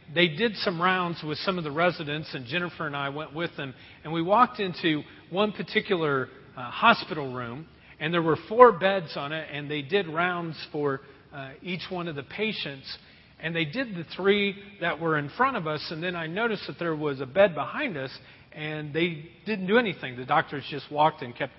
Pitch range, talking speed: 140-185 Hz, 210 wpm